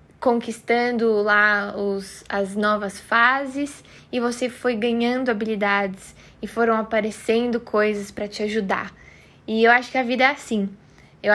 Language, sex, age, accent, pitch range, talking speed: Portuguese, female, 10-29, Brazilian, 210-235 Hz, 145 wpm